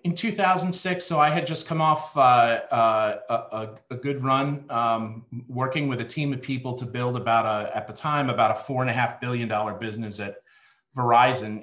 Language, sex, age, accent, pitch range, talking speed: English, male, 40-59, American, 115-145 Hz, 200 wpm